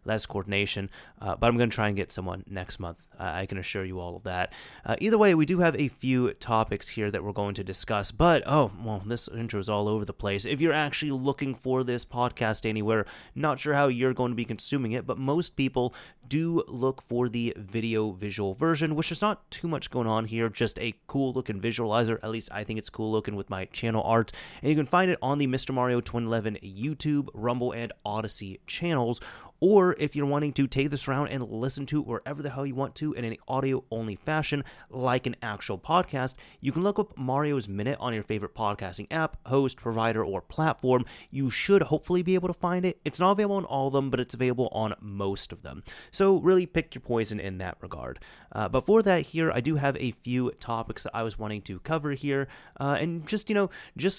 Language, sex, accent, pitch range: English, male, American, 110-150 Hz